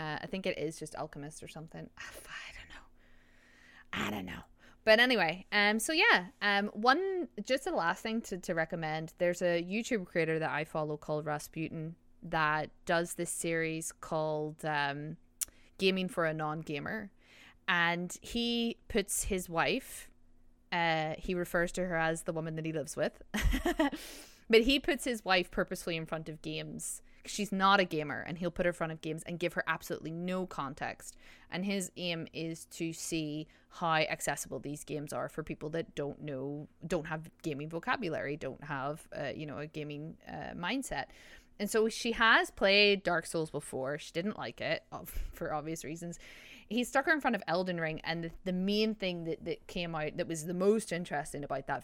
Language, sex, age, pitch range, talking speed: English, female, 20-39, 155-195 Hz, 185 wpm